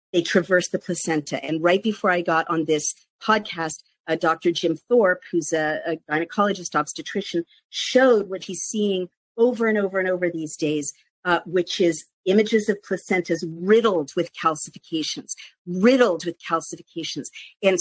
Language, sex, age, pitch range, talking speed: English, female, 50-69, 165-205 Hz, 150 wpm